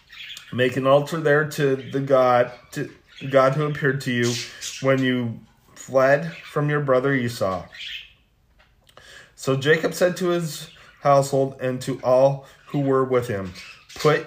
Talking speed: 145 wpm